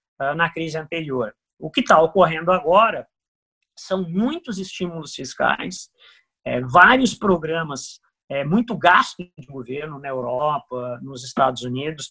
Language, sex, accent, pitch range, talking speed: Portuguese, male, Brazilian, 150-200 Hz, 115 wpm